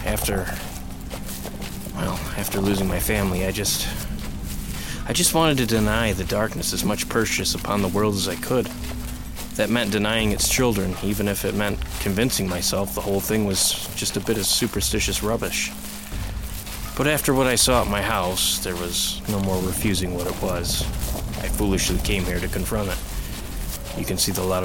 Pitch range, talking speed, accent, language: 90-115 Hz, 180 wpm, American, English